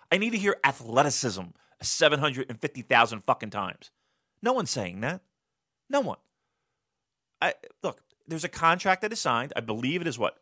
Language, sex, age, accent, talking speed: English, male, 30-49, American, 150 wpm